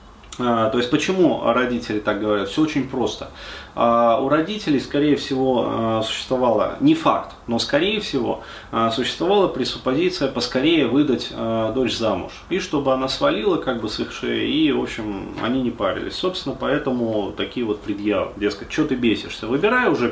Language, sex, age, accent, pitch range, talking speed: Russian, male, 30-49, native, 115-150 Hz, 150 wpm